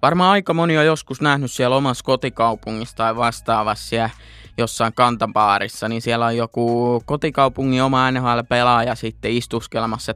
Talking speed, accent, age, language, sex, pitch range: 135 wpm, native, 20-39, Finnish, male, 110-135 Hz